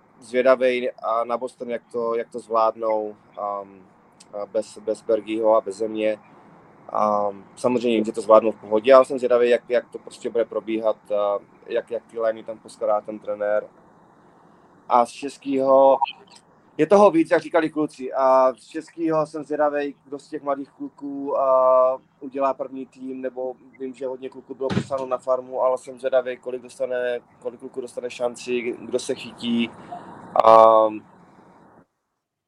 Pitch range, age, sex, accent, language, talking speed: 110-135 Hz, 20-39, male, native, Czech, 155 wpm